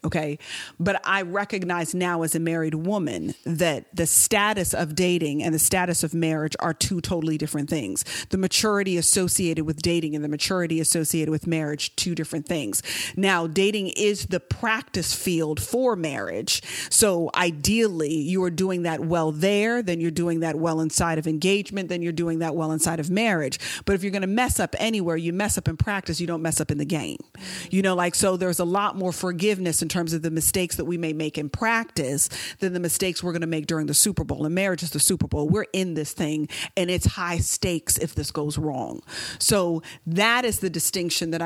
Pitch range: 160-190 Hz